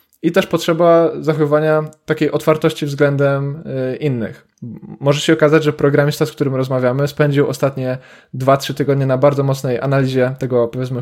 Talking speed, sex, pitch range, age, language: 140 wpm, male, 130-150 Hz, 20-39, Polish